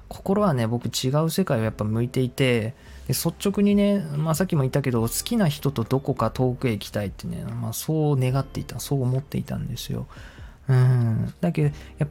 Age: 20-39